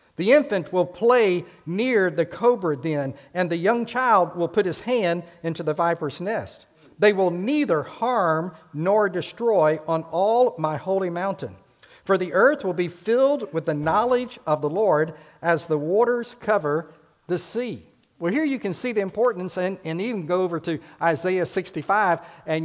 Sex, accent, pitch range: male, American, 165-210 Hz